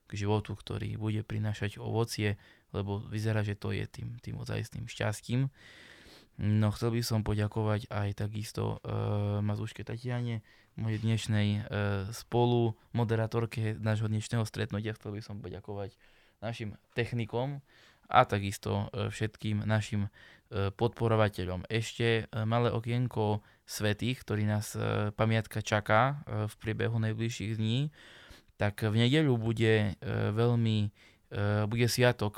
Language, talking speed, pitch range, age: Slovak, 120 wpm, 105-115 Hz, 20-39